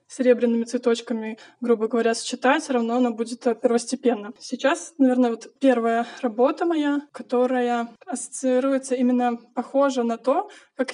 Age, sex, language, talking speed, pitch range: 20-39, female, Russian, 120 wpm, 240-265 Hz